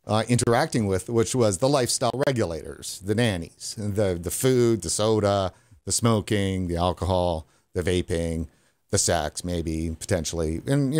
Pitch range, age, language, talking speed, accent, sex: 95-120 Hz, 50-69, English, 145 wpm, American, male